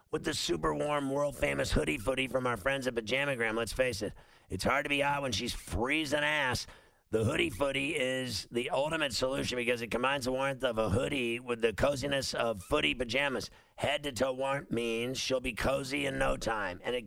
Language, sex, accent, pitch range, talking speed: English, male, American, 115-135 Hz, 195 wpm